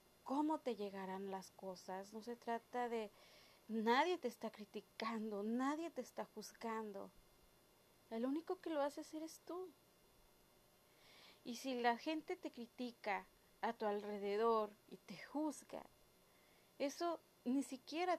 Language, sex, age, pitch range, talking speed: Spanish, female, 30-49, 215-290 Hz, 130 wpm